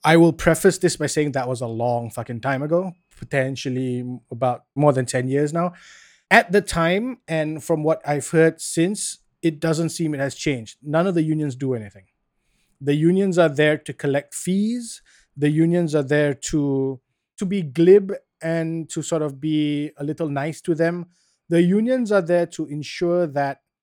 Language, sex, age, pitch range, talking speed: English, male, 20-39, 145-180 Hz, 185 wpm